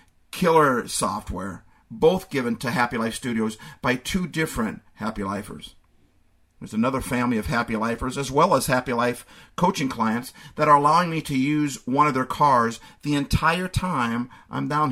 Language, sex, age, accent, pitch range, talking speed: English, male, 50-69, American, 115-150 Hz, 165 wpm